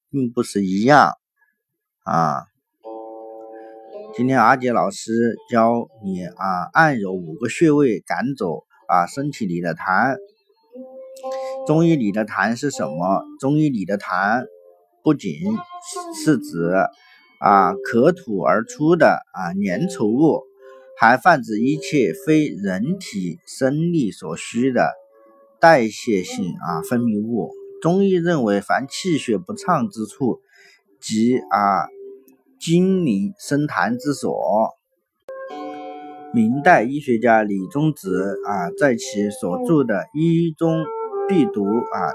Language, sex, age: Chinese, male, 50-69